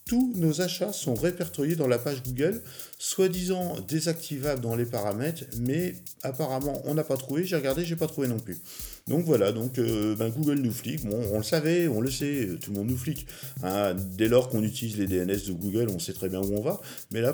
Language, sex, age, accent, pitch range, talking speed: French, male, 50-69, French, 110-160 Hz, 225 wpm